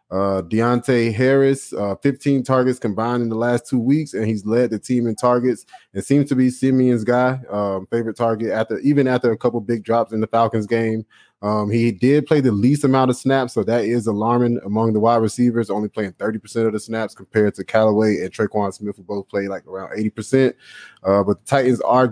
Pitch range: 105-120 Hz